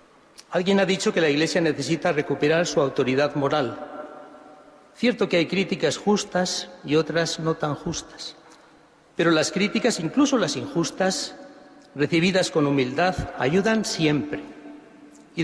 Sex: male